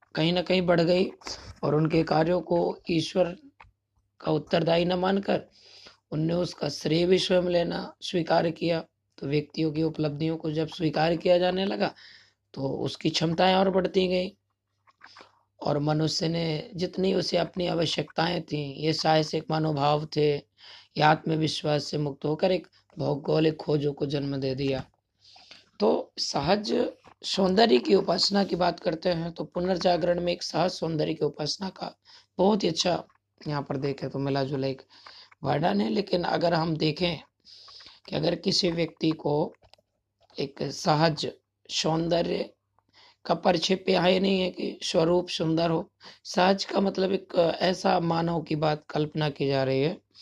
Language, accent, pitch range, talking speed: Hindi, native, 150-180 Hz, 140 wpm